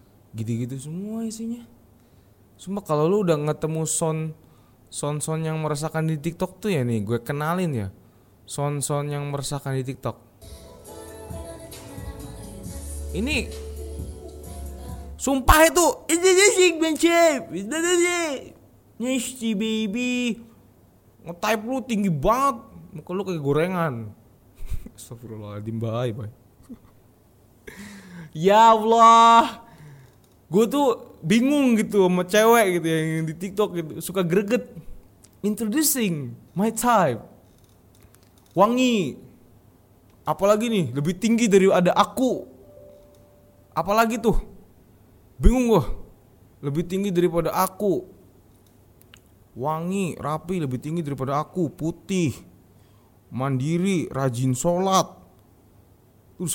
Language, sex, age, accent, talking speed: Indonesian, male, 20-39, native, 95 wpm